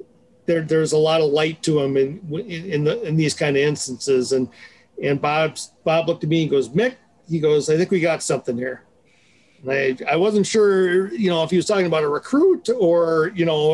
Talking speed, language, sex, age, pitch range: 215 wpm, English, male, 50-69, 145-190 Hz